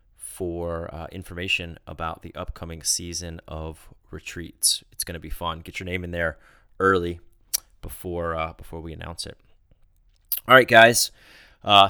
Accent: American